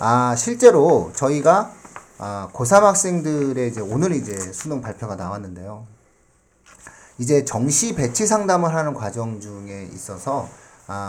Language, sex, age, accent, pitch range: Korean, male, 40-59, native, 100-145 Hz